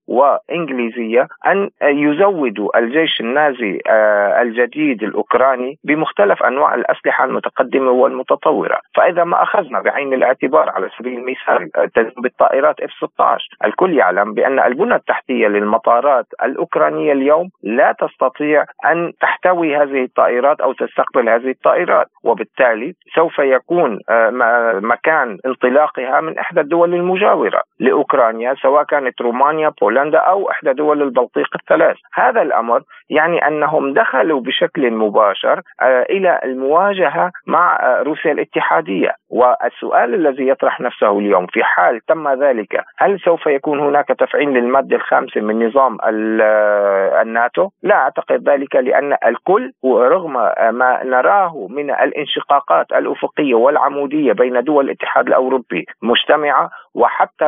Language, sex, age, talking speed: Arabic, male, 40-59, 115 wpm